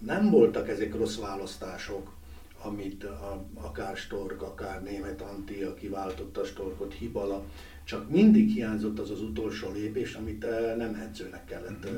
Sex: male